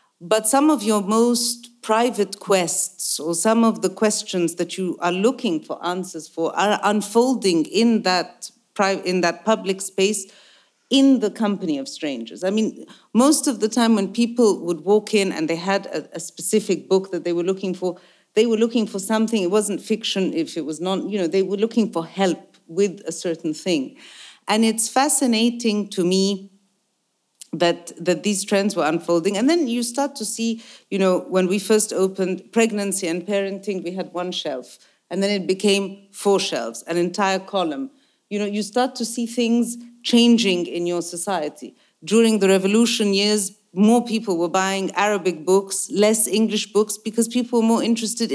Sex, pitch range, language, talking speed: female, 185-225 Hz, Italian, 180 wpm